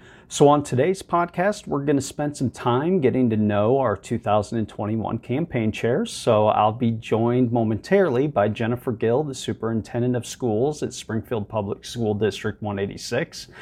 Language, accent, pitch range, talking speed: English, American, 110-145 Hz, 155 wpm